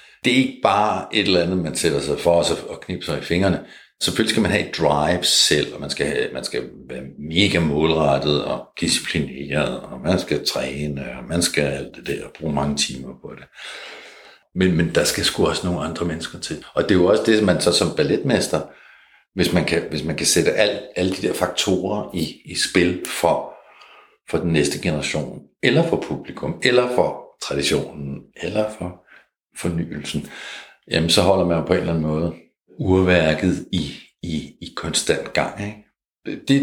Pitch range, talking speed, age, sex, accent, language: 80-130 Hz, 190 wpm, 60-79, male, native, Danish